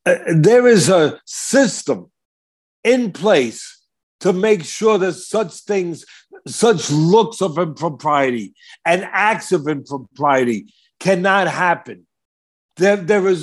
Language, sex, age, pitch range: English, male, 60-79, 160-215 Hz